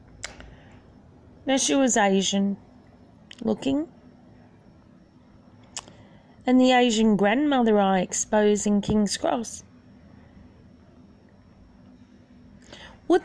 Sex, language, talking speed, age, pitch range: female, English, 65 wpm, 30-49, 205-270 Hz